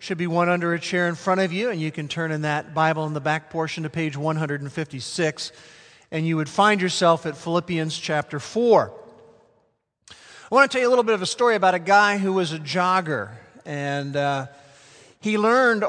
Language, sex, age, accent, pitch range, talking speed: English, male, 40-59, American, 165-205 Hz, 210 wpm